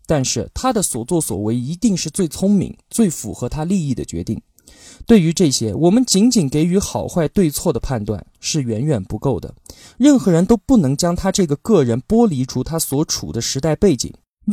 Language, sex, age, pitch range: Chinese, male, 20-39, 125-190 Hz